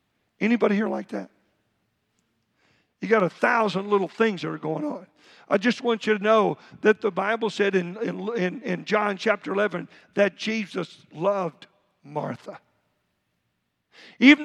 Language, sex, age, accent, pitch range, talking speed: English, male, 50-69, American, 210-250 Hz, 150 wpm